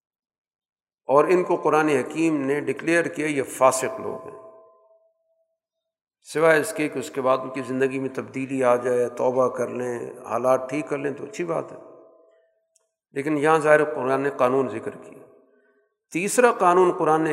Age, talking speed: 50-69, 170 wpm